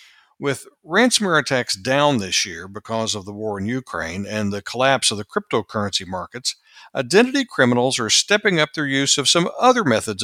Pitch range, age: 110-160 Hz, 60-79